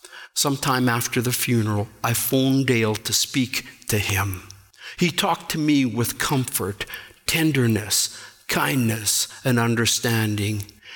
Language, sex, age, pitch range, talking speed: English, male, 60-79, 110-135 Hz, 115 wpm